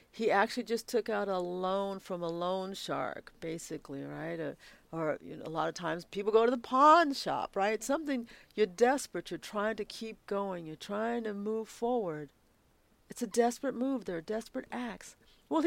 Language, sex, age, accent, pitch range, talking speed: English, female, 50-69, American, 175-245 Hz, 185 wpm